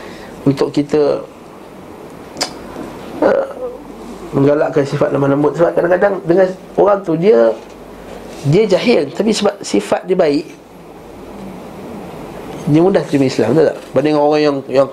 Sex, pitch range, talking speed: male, 140-180 Hz, 115 wpm